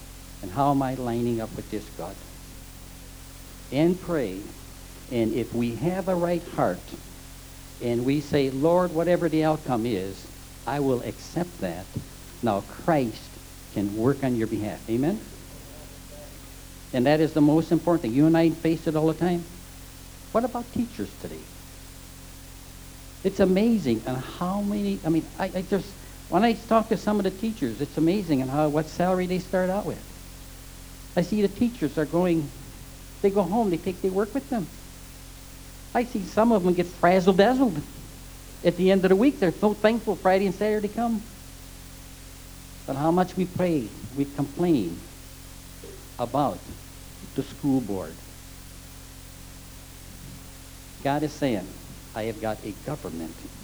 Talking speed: 155 wpm